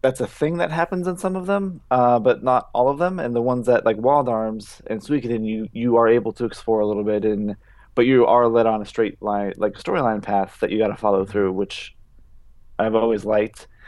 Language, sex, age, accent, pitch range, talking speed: English, male, 20-39, American, 105-120 Hz, 240 wpm